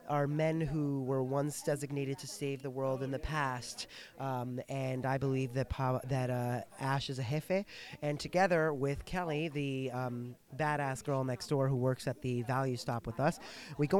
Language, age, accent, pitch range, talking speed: English, 30-49, American, 130-165 Hz, 190 wpm